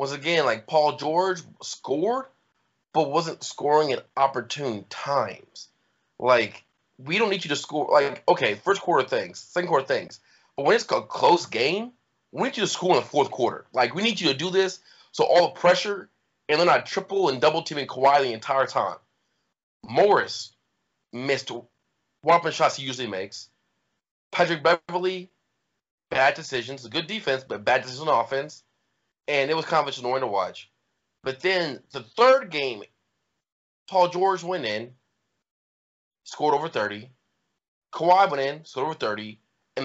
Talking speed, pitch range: 165 wpm, 120-170 Hz